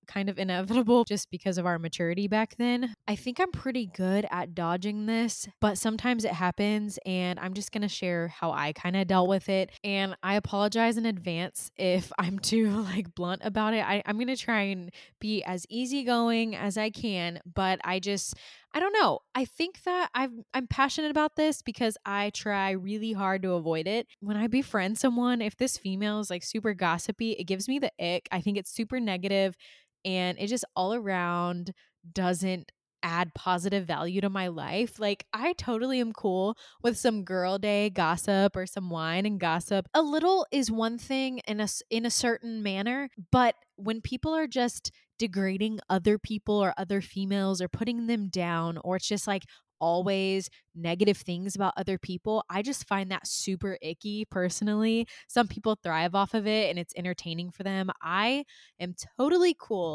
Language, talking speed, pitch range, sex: English, 185 wpm, 185-230 Hz, female